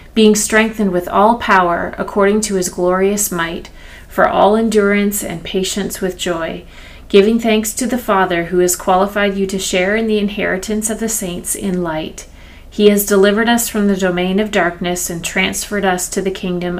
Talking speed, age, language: 180 wpm, 30-49, English